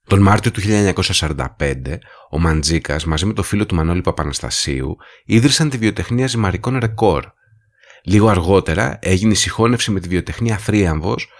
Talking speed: 140 wpm